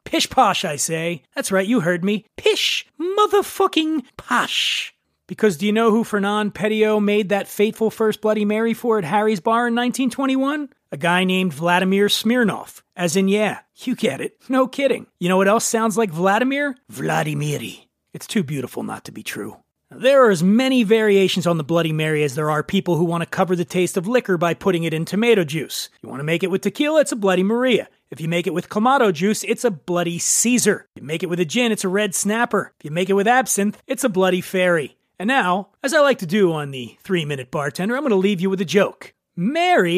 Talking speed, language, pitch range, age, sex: 225 wpm, English, 180-235 Hz, 30-49, male